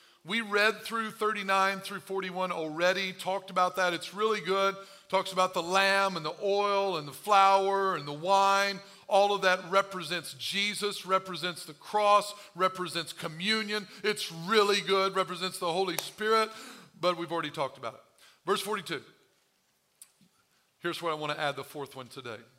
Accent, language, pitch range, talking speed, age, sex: American, English, 170-210 Hz, 160 wpm, 50-69, male